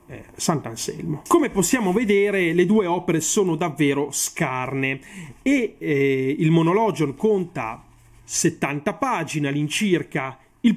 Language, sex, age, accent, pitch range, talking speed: Italian, male, 30-49, native, 145-190 Hz, 110 wpm